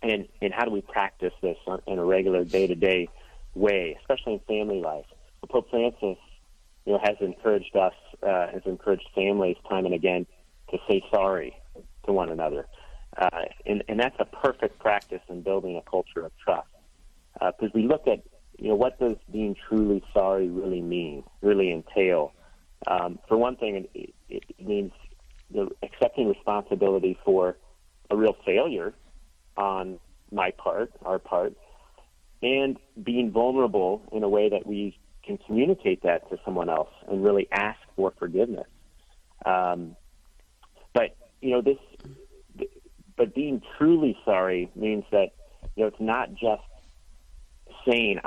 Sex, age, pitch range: male, 40-59, 90-110 Hz